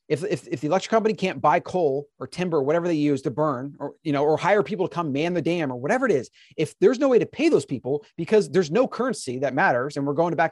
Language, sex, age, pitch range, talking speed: Persian, male, 30-49, 140-175 Hz, 285 wpm